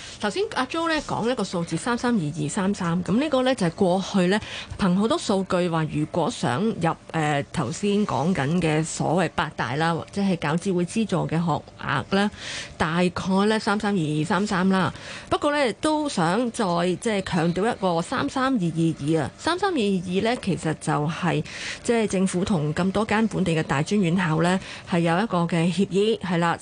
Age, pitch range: 30-49, 170-215 Hz